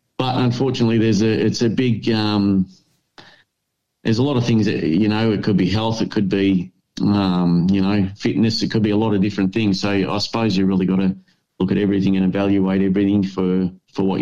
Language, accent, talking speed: English, Australian, 215 wpm